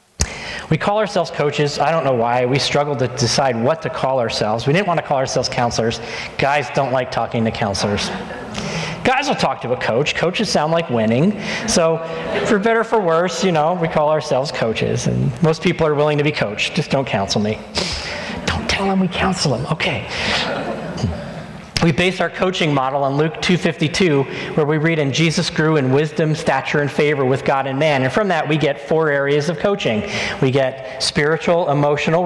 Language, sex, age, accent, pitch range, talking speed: English, male, 40-59, American, 135-175 Hz, 195 wpm